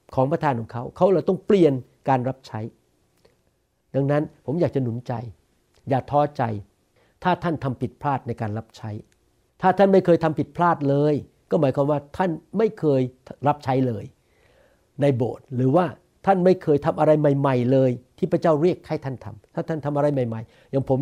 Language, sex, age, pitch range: Thai, male, 60-79, 130-170 Hz